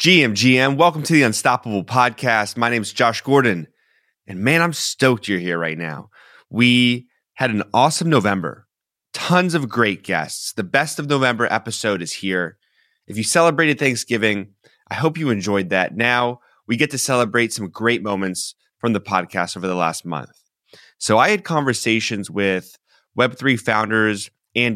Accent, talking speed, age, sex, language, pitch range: American, 165 wpm, 30-49, male, English, 95-120 Hz